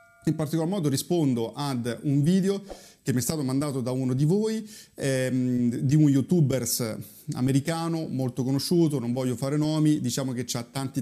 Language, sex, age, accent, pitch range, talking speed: Italian, male, 30-49, native, 125-155 Hz, 170 wpm